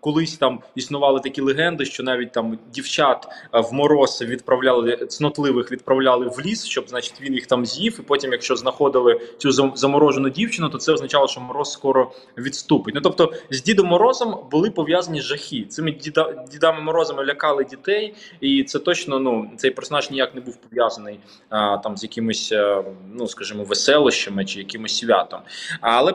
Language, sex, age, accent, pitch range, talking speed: Ukrainian, male, 20-39, native, 130-175 Hz, 165 wpm